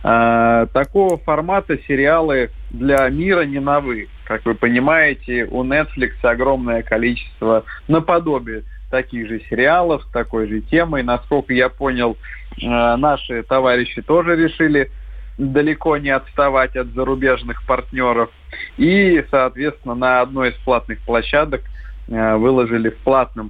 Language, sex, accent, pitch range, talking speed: Russian, male, native, 115-150 Hz, 115 wpm